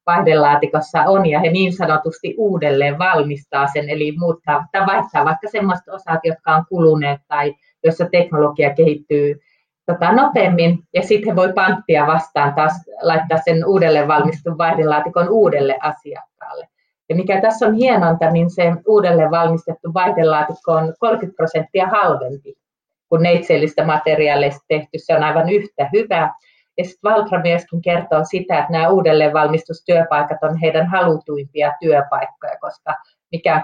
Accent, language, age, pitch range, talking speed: native, Finnish, 30-49, 150-180 Hz, 135 wpm